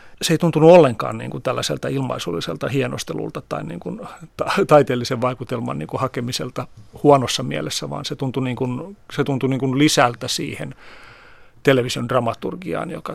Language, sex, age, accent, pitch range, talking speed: Finnish, male, 40-59, native, 120-145 Hz, 130 wpm